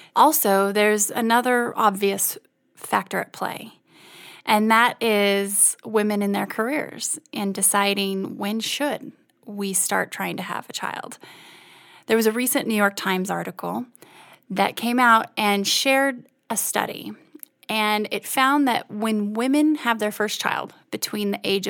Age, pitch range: 30-49, 200-245 Hz